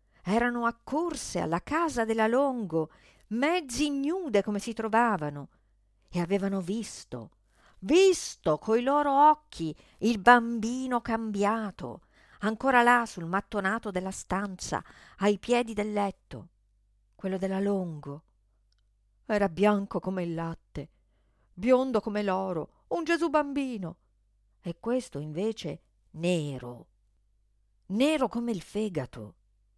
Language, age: Italian, 50-69